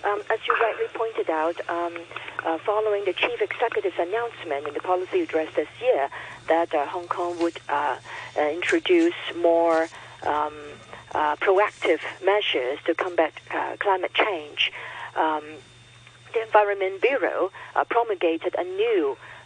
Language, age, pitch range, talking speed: English, 50-69, 170-285 Hz, 140 wpm